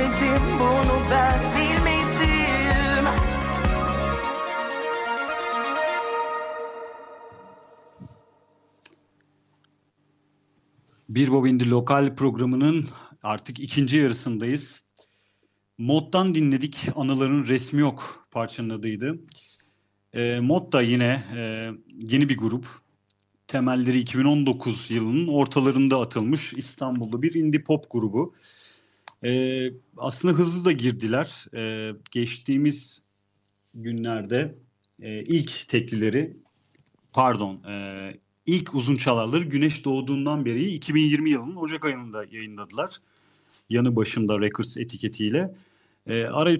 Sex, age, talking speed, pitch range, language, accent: male, 40-59, 80 wpm, 110-150 Hz, Turkish, native